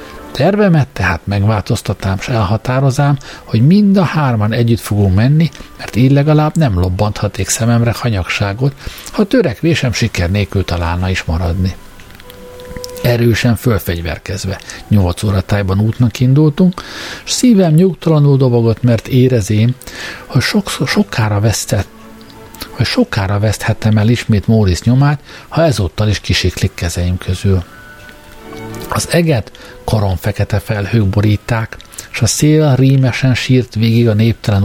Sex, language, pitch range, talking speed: male, Hungarian, 100-135 Hz, 120 wpm